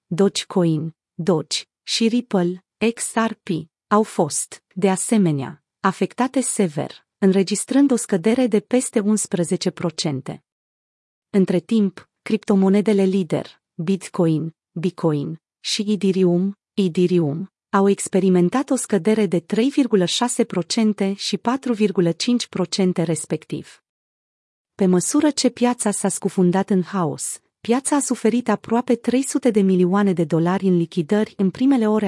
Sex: female